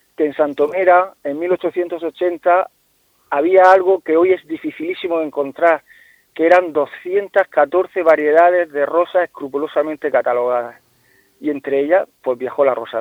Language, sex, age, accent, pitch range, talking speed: Spanish, male, 40-59, Spanish, 145-180 Hz, 125 wpm